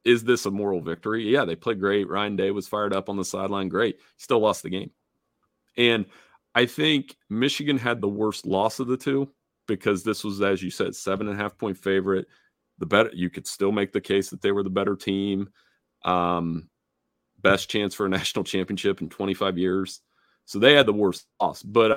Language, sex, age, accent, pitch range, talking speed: English, male, 30-49, American, 90-115 Hz, 210 wpm